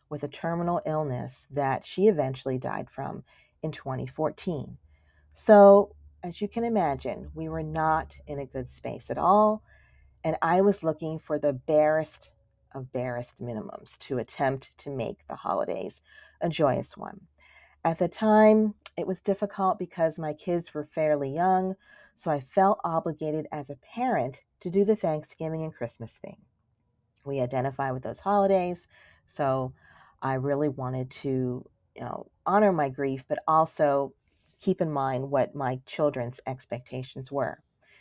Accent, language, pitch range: American, English, 130-195 Hz